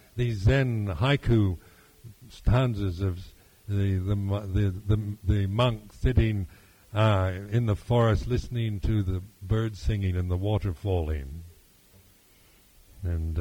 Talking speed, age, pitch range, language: 120 wpm, 60-79, 95-115 Hz, English